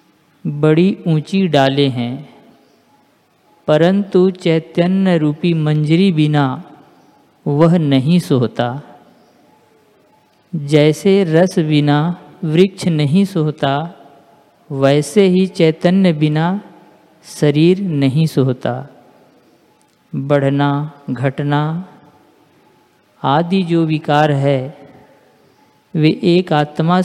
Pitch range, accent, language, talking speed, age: 145-180 Hz, native, Hindi, 75 wpm, 50-69